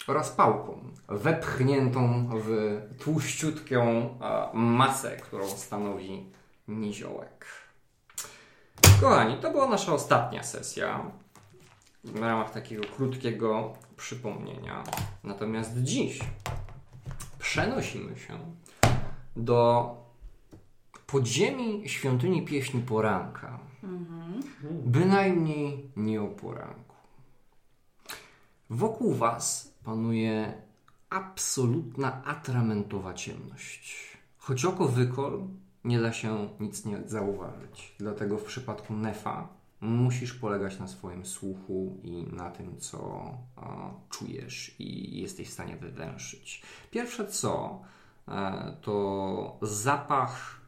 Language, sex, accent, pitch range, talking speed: Polish, male, native, 105-135 Hz, 85 wpm